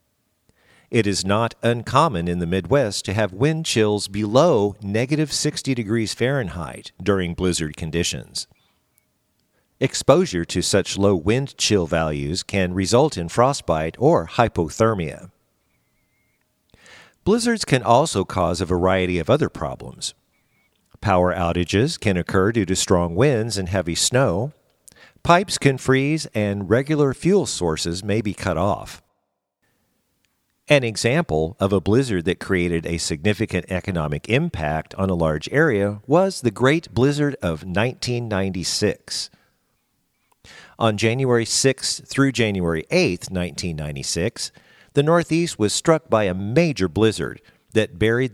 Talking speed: 125 wpm